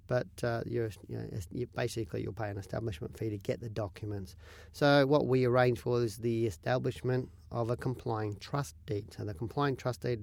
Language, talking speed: English, 200 wpm